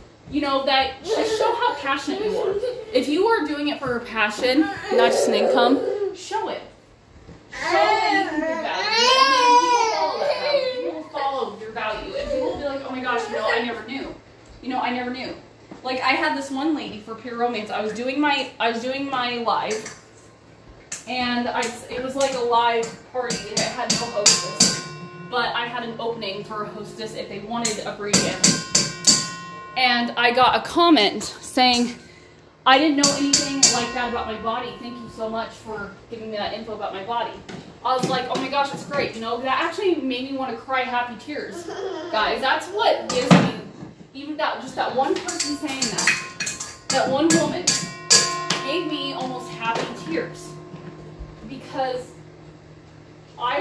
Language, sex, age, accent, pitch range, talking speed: English, female, 20-39, American, 220-290 Hz, 190 wpm